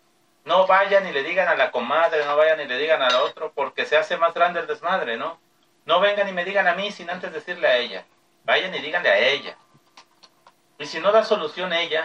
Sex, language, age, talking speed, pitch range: male, Spanish, 40-59, 230 wpm, 140-190 Hz